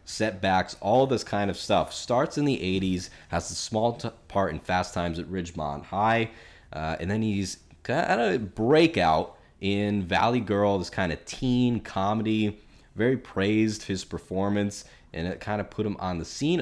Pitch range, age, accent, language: 80-105 Hz, 20-39, American, English